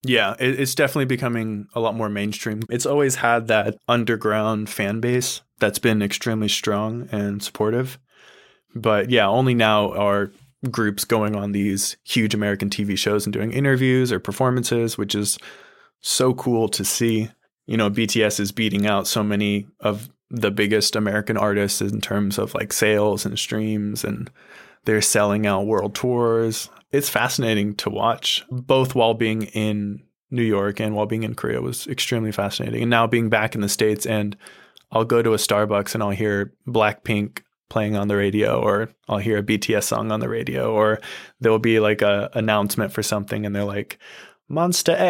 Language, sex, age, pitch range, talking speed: English, male, 20-39, 105-120 Hz, 175 wpm